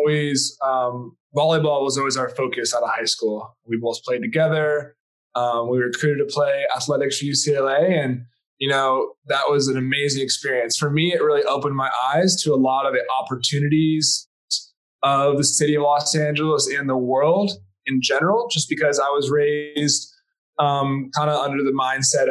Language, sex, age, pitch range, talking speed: English, male, 20-39, 140-165 Hz, 180 wpm